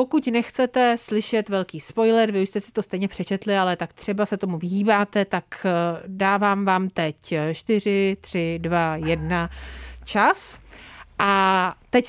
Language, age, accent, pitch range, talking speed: Czech, 40-59, native, 190-235 Hz, 145 wpm